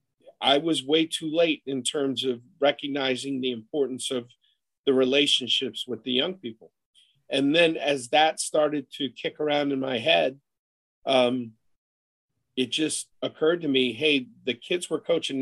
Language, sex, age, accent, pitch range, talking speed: English, male, 40-59, American, 125-150 Hz, 155 wpm